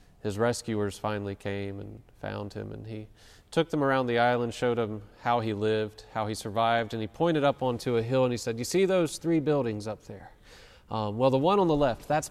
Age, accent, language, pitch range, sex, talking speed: 30-49, American, English, 105-130 Hz, male, 230 wpm